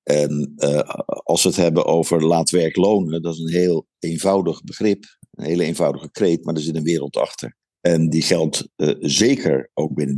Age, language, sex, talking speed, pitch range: 50-69, Dutch, male, 195 wpm, 75-100 Hz